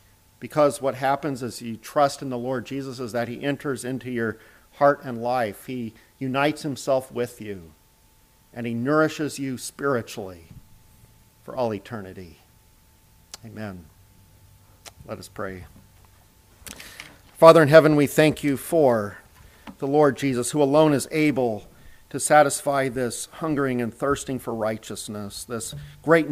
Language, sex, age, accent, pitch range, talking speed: English, male, 50-69, American, 110-140 Hz, 135 wpm